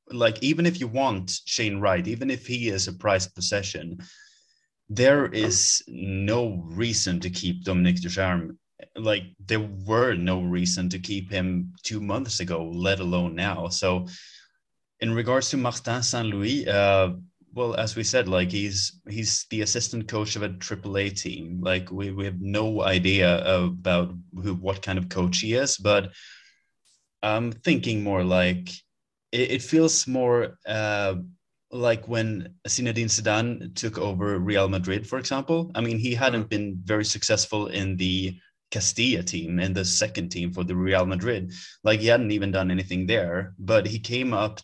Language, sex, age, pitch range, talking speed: English, male, 30-49, 90-110 Hz, 160 wpm